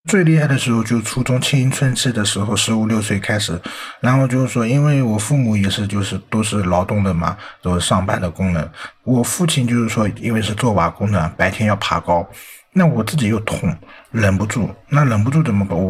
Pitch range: 90-110 Hz